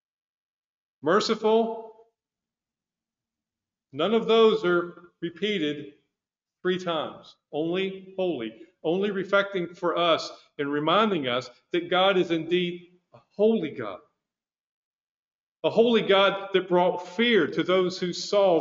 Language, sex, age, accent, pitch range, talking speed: English, male, 50-69, American, 170-225 Hz, 110 wpm